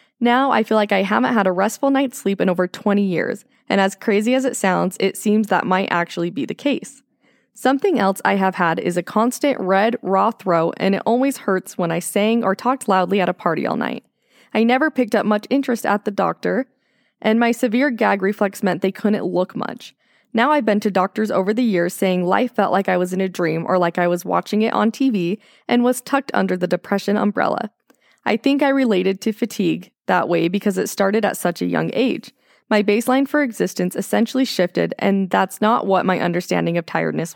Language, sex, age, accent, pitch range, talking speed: English, female, 20-39, American, 190-245 Hz, 220 wpm